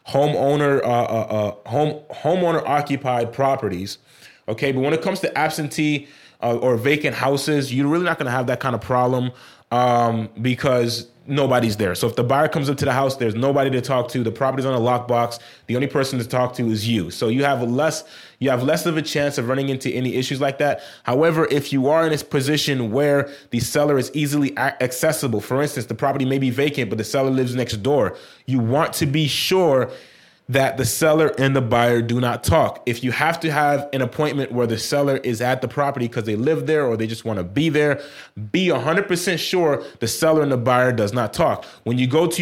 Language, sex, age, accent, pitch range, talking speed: English, male, 20-39, American, 125-150 Hz, 220 wpm